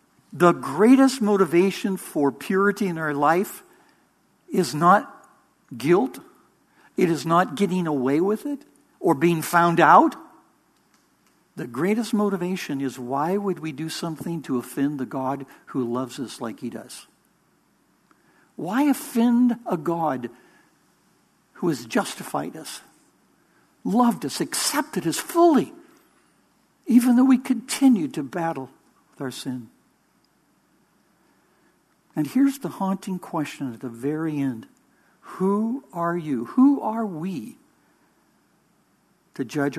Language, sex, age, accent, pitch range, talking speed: English, male, 60-79, American, 145-225 Hz, 120 wpm